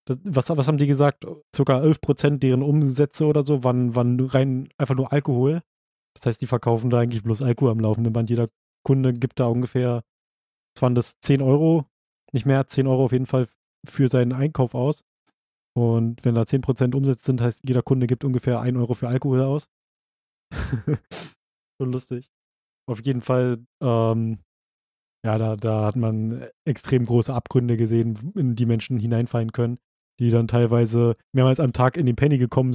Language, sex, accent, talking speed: German, male, German, 170 wpm